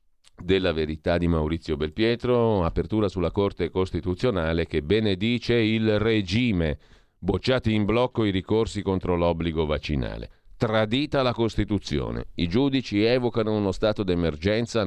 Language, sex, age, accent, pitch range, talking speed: Italian, male, 50-69, native, 80-115 Hz, 120 wpm